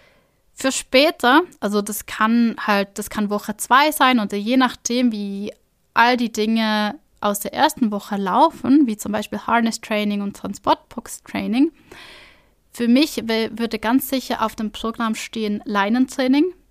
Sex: female